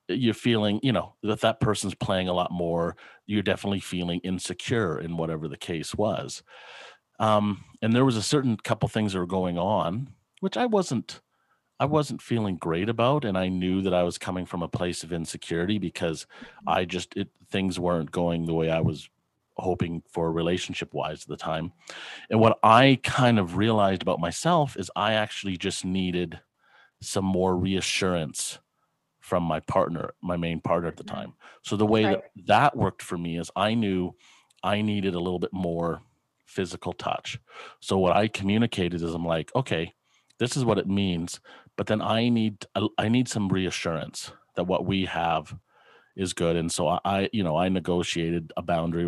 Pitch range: 85-110 Hz